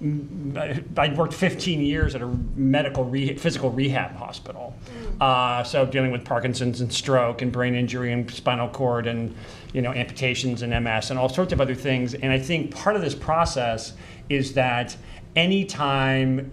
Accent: American